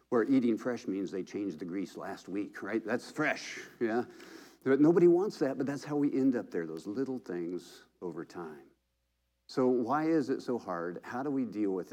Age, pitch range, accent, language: 50-69, 90-130 Hz, American, English